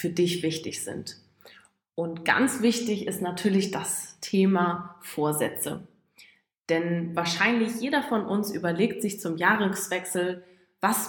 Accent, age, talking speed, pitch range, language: German, 20-39, 120 wpm, 175-210 Hz, English